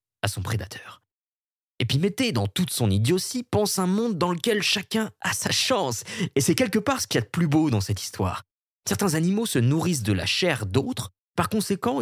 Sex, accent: male, French